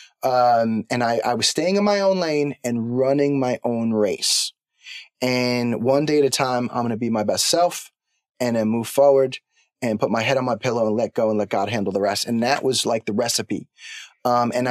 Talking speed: 230 wpm